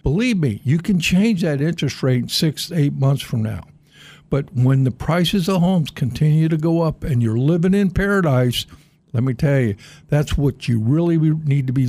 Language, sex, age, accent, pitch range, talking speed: English, male, 60-79, American, 140-175 Hz, 195 wpm